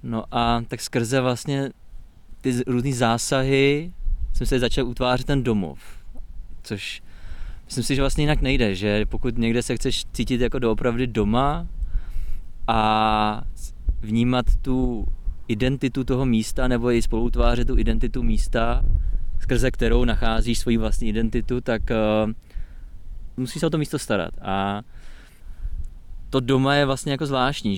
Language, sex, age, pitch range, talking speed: Czech, male, 20-39, 110-125 Hz, 135 wpm